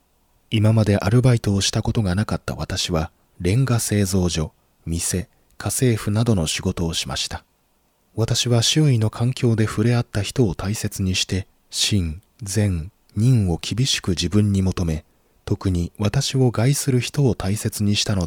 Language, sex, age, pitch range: Japanese, male, 20-39, 90-120 Hz